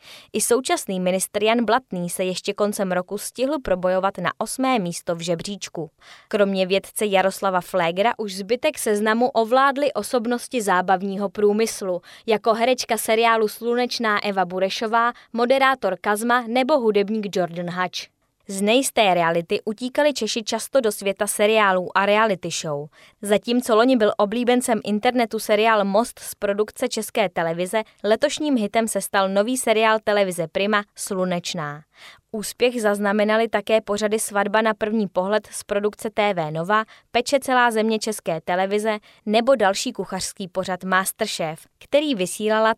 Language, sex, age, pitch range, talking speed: Czech, female, 20-39, 190-225 Hz, 135 wpm